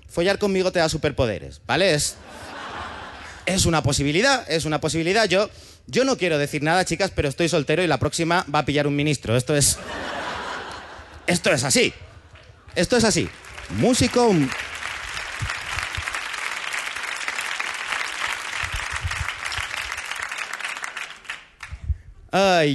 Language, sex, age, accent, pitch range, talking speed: Spanish, male, 30-49, Spanish, 150-185 Hz, 110 wpm